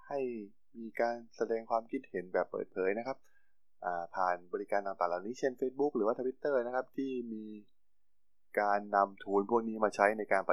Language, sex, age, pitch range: Thai, male, 20-39, 95-120 Hz